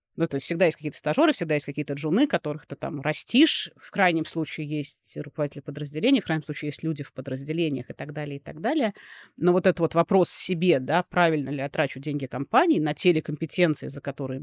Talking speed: 210 wpm